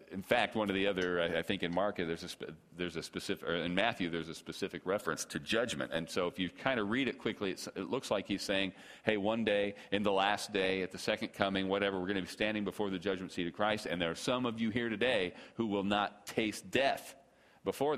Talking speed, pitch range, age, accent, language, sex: 255 wpm, 95-110 Hz, 40-59, American, English, male